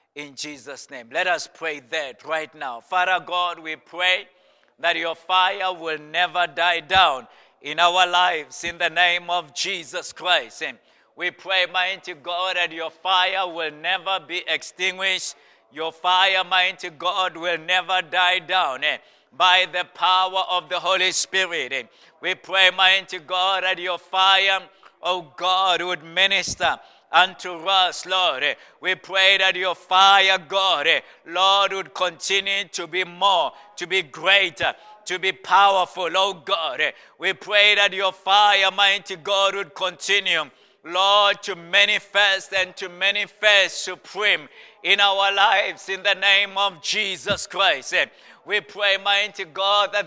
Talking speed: 150 wpm